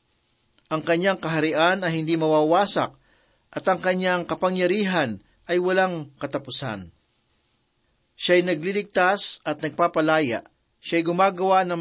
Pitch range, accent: 150-185 Hz, native